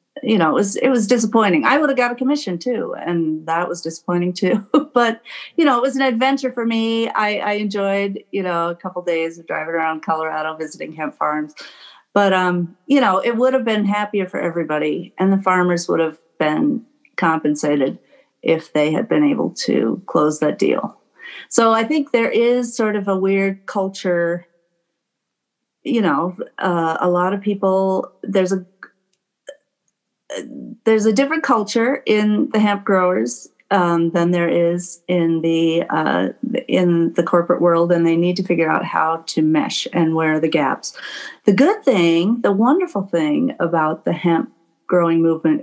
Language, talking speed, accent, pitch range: English, 175 wpm, American, 170-235 Hz